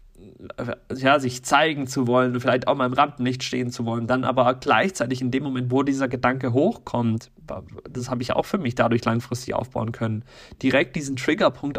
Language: German